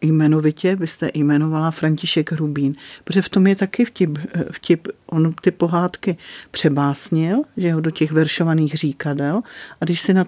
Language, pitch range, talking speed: English, 150-180 Hz, 145 wpm